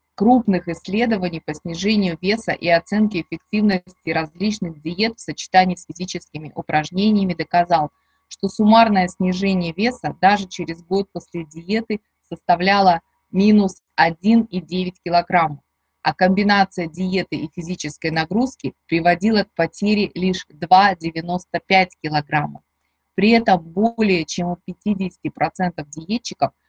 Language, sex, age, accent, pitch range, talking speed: Russian, female, 20-39, native, 165-200 Hz, 110 wpm